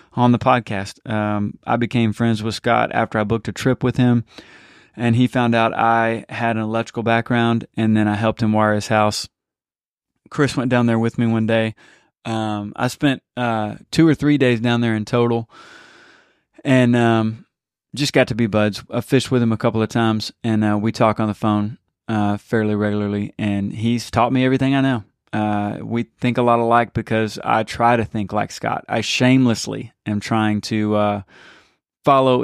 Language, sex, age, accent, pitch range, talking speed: English, male, 20-39, American, 110-125 Hz, 195 wpm